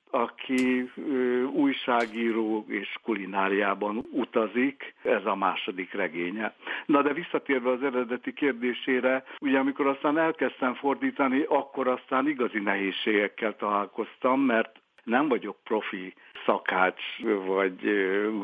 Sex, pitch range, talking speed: male, 105-125 Hz, 105 wpm